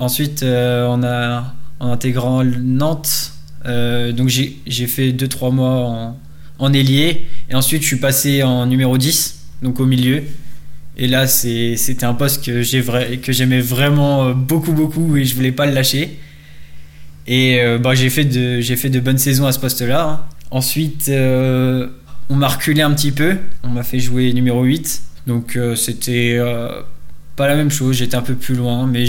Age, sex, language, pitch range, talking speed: 20-39, male, French, 120-140 Hz, 190 wpm